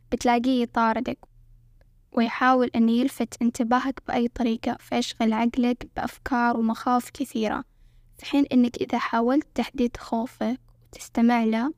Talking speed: 110 wpm